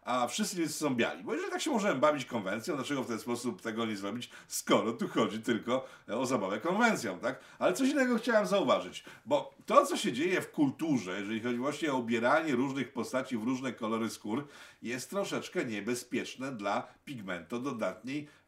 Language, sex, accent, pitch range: Polish, male, native, 115-145 Hz